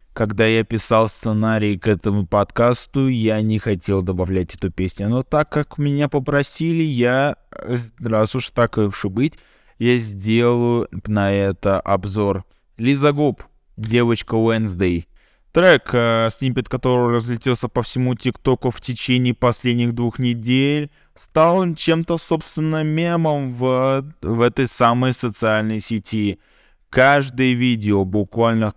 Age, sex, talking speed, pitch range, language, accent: 20-39, male, 125 wpm, 105-140 Hz, Russian, native